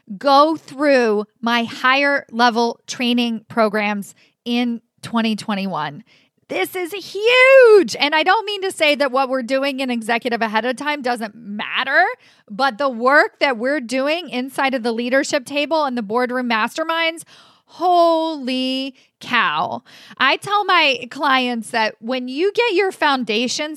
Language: English